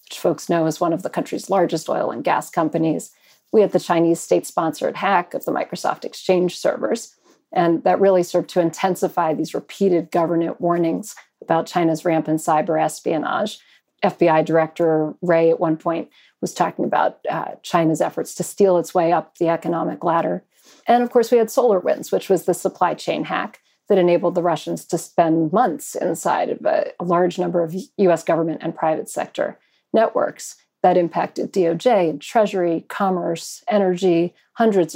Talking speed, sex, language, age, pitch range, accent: 170 wpm, female, English, 40-59, 165-200 Hz, American